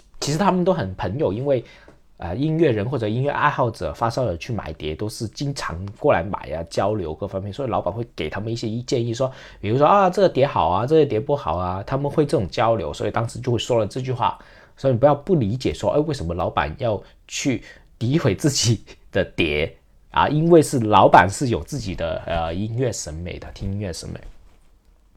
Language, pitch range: Chinese, 95-135 Hz